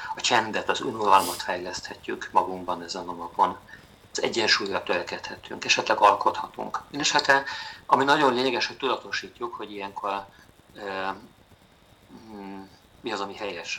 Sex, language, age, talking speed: male, Hungarian, 50-69, 120 wpm